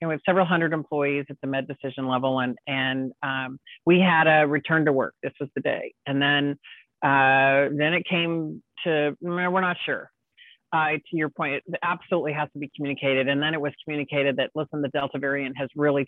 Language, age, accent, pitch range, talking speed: English, 40-59, American, 145-185 Hz, 210 wpm